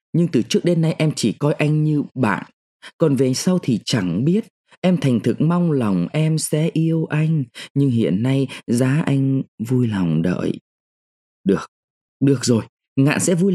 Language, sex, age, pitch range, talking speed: Vietnamese, male, 20-39, 120-170 Hz, 175 wpm